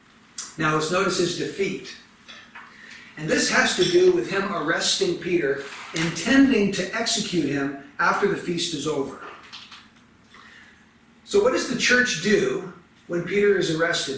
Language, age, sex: English, 50-69, male